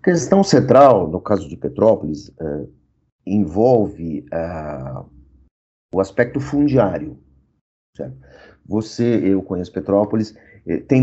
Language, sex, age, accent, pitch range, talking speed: Portuguese, male, 40-59, Brazilian, 100-140 Hz, 110 wpm